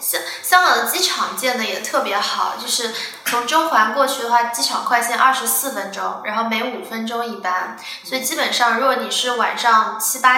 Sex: female